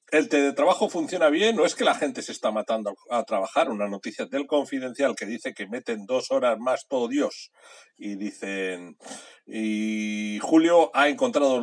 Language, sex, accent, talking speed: Spanish, male, Spanish, 180 wpm